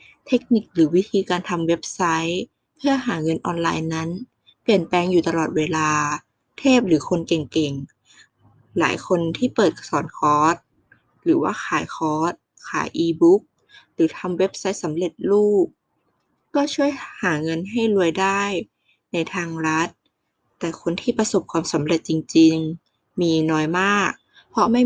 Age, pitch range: 20-39, 160-200 Hz